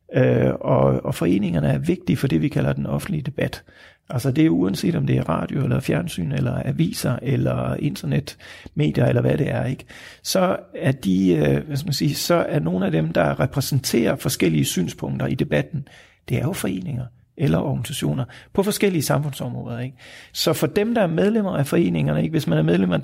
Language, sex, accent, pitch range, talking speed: Danish, male, native, 100-170 Hz, 190 wpm